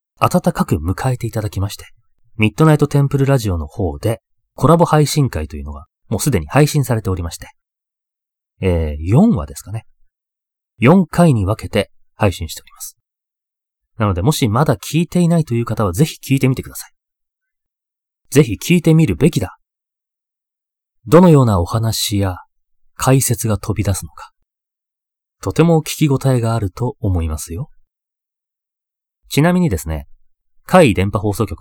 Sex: male